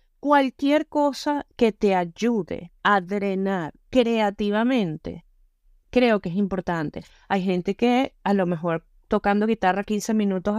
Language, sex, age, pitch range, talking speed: Spanish, female, 20-39, 190-245 Hz, 125 wpm